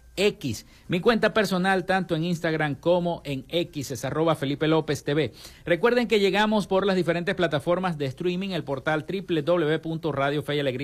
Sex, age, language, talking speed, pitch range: male, 50-69, Spanish, 145 wpm, 140-175 Hz